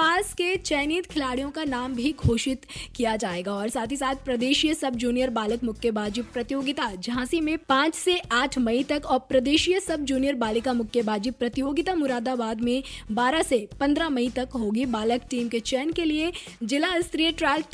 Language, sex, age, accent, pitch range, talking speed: Hindi, female, 20-39, native, 230-295 Hz, 175 wpm